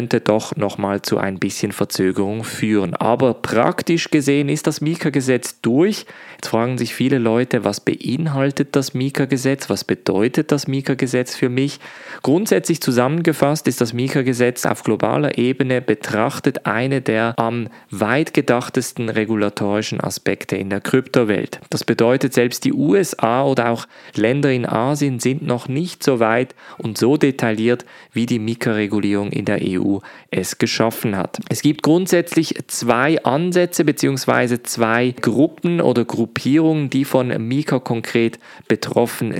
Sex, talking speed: male, 140 wpm